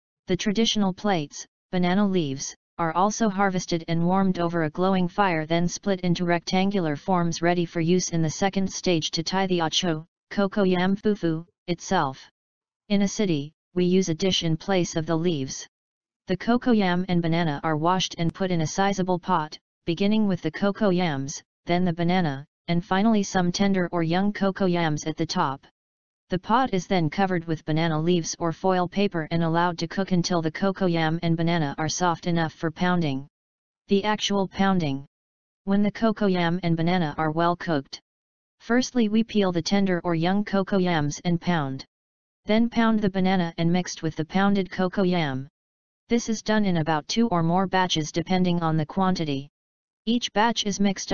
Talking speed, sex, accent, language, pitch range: 180 wpm, female, American, English, 165-195 Hz